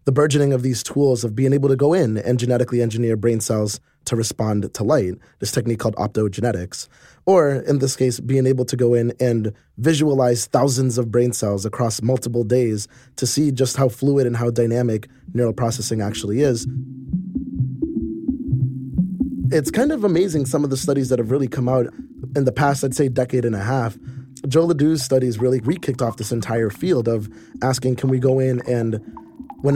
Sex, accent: male, American